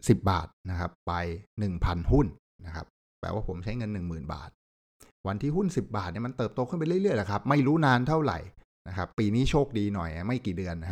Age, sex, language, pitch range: 60-79, male, Thai, 90-130 Hz